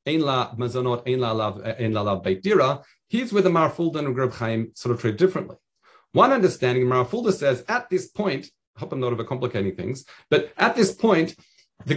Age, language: 40-59, English